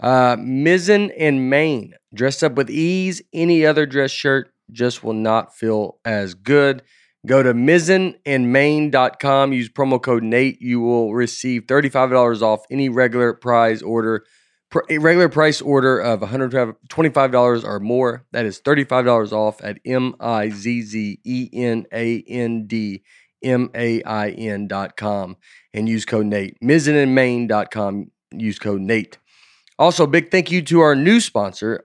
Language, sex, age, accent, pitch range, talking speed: English, male, 30-49, American, 115-140 Hz, 120 wpm